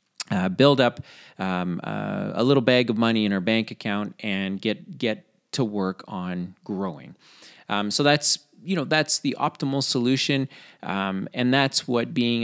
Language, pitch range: English, 105-140 Hz